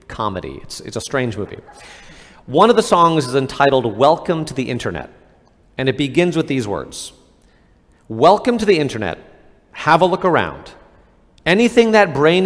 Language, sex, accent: English, male, American